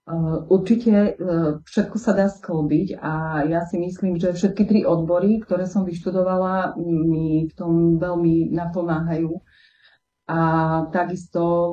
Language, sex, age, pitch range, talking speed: Slovak, female, 30-49, 165-185 Hz, 120 wpm